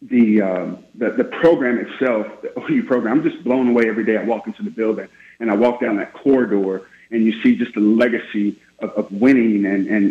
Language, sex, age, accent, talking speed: English, male, 30-49, American, 220 wpm